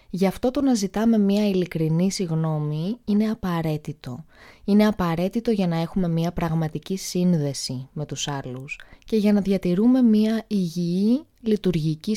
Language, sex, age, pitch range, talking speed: Greek, female, 20-39, 155-215 Hz, 140 wpm